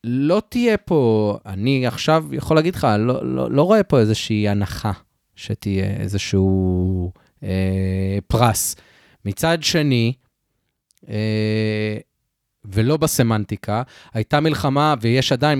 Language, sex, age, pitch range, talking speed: Hebrew, male, 30-49, 110-150 Hz, 110 wpm